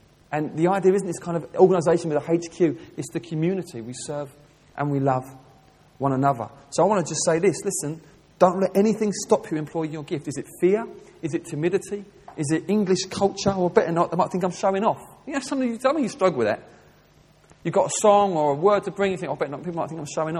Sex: male